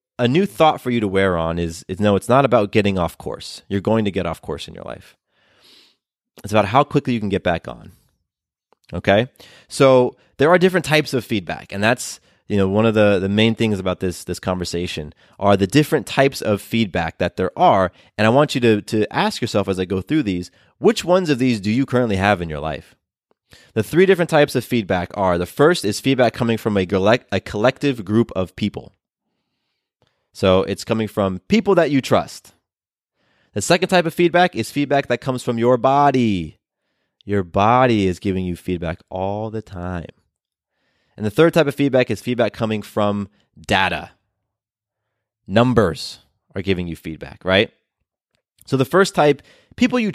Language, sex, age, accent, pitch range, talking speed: English, male, 20-39, American, 95-135 Hz, 195 wpm